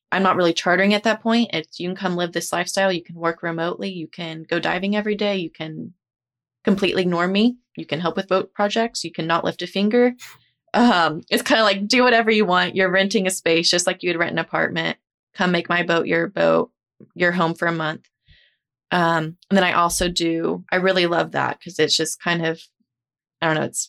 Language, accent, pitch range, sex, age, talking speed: English, American, 165-190 Hz, female, 20-39, 225 wpm